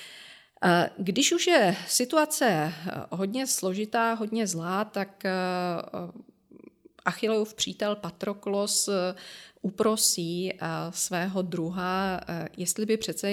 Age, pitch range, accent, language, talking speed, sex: 40-59, 175-205 Hz, native, Czech, 80 wpm, female